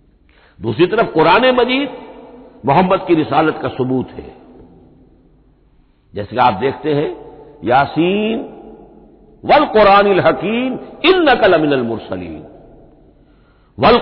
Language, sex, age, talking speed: Hindi, male, 60-79, 95 wpm